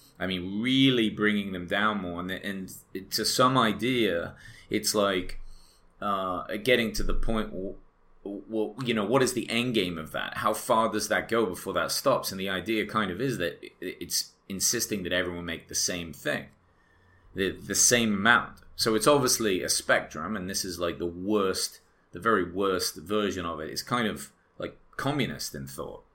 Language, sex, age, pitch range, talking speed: English, male, 30-49, 90-105 Hz, 180 wpm